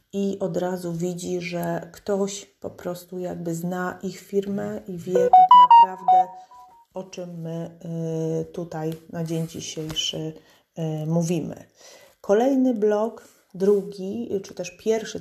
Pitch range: 180-210 Hz